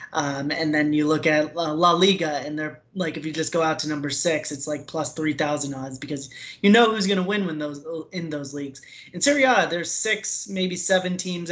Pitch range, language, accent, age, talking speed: 145-165 Hz, English, American, 20-39, 235 wpm